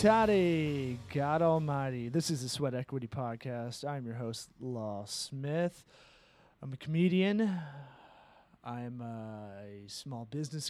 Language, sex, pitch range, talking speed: English, male, 125-160 Hz, 110 wpm